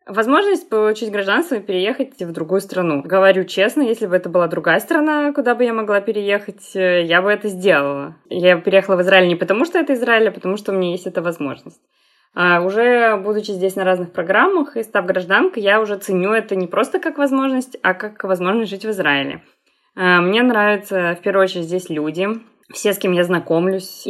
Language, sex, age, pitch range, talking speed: Russian, female, 20-39, 175-215 Hz, 190 wpm